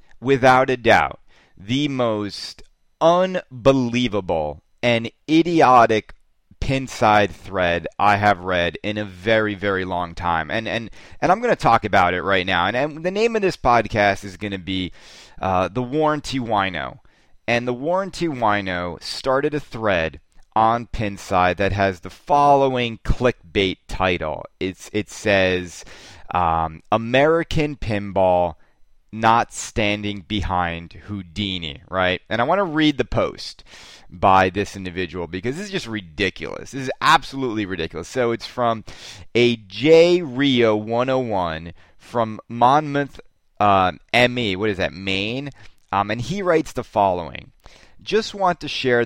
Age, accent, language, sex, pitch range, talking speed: 30-49, American, English, male, 95-130 Hz, 140 wpm